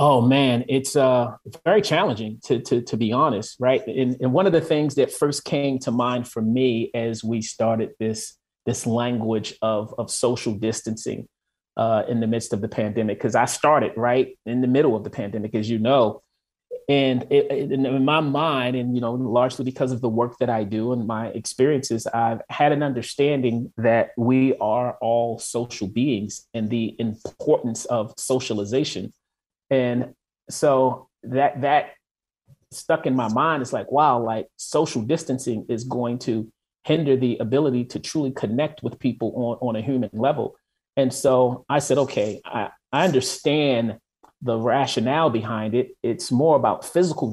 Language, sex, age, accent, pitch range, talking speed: English, male, 30-49, American, 115-135 Hz, 175 wpm